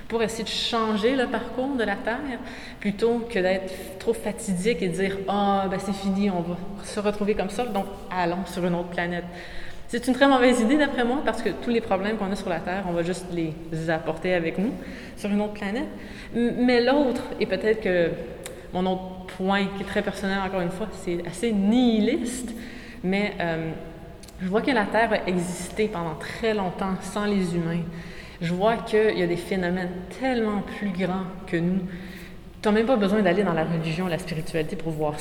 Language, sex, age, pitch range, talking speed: French, female, 20-39, 175-215 Hz, 210 wpm